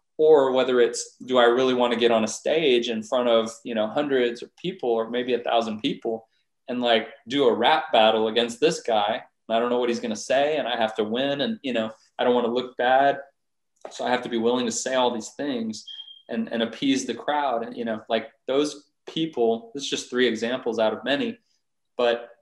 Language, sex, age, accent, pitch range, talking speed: English, male, 20-39, American, 115-130 Hz, 235 wpm